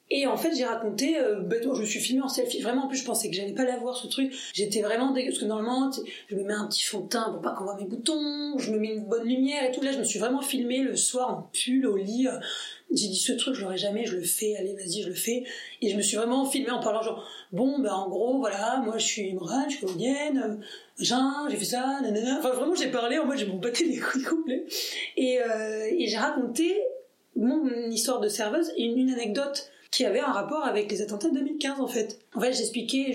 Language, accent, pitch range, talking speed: French, French, 215-270 Hz, 275 wpm